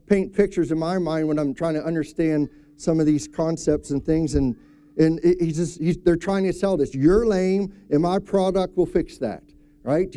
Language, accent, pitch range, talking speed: English, American, 150-195 Hz, 205 wpm